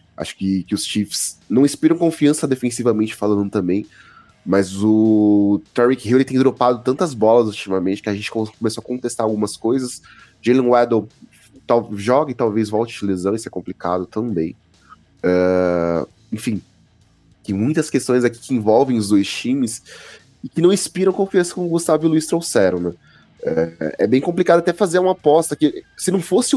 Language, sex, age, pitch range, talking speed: Portuguese, male, 20-39, 100-125 Hz, 170 wpm